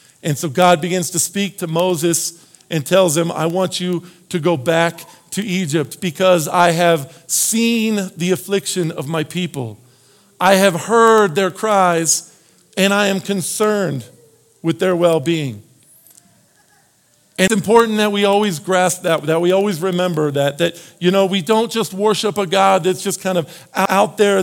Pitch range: 170-200 Hz